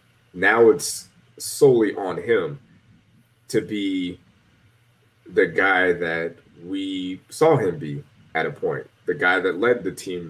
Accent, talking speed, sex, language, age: American, 135 wpm, male, English, 20-39